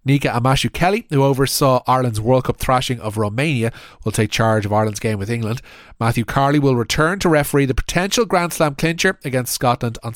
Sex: male